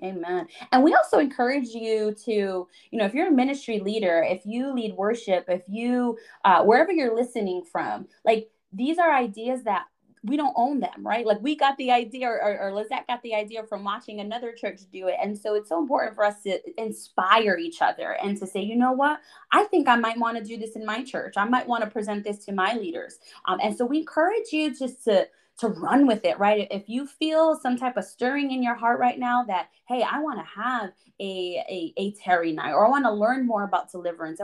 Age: 20-39